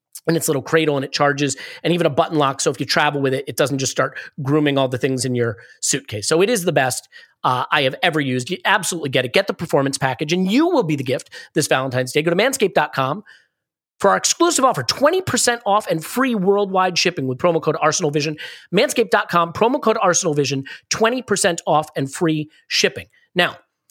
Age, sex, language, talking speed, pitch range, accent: 30-49, male, English, 210 wpm, 145-200 Hz, American